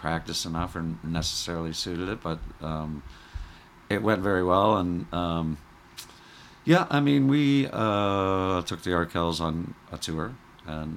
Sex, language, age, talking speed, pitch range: male, English, 50-69, 140 wpm, 80-90 Hz